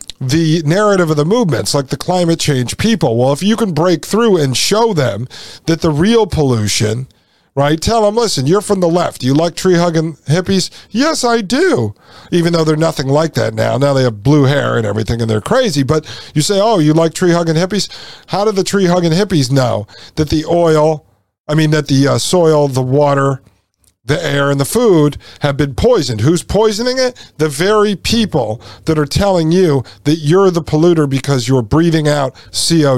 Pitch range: 130-175 Hz